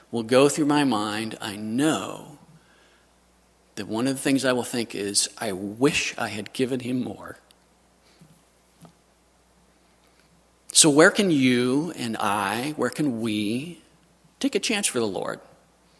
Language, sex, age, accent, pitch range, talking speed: English, male, 40-59, American, 110-160 Hz, 145 wpm